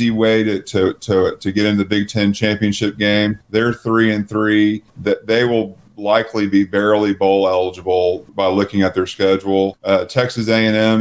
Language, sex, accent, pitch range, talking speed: English, male, American, 95-105 Hz, 180 wpm